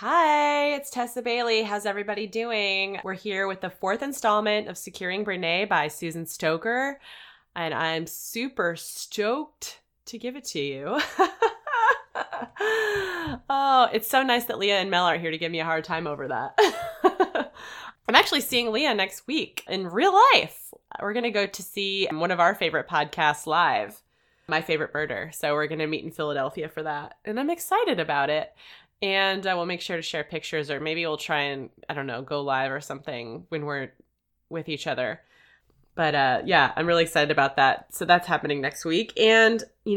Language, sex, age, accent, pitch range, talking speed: English, female, 20-39, American, 155-230 Hz, 185 wpm